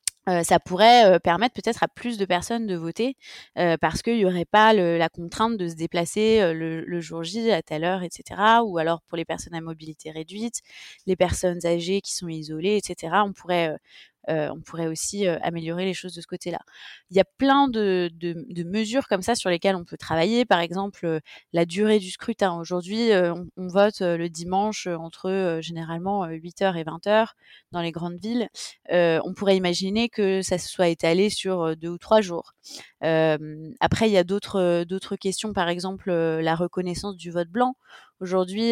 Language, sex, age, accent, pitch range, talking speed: French, female, 20-39, French, 165-200 Hz, 210 wpm